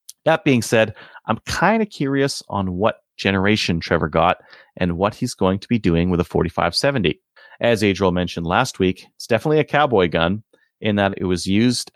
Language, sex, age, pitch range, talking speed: English, male, 30-49, 90-115 Hz, 185 wpm